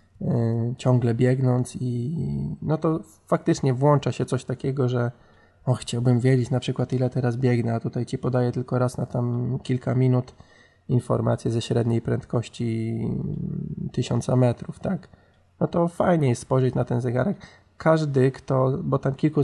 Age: 20-39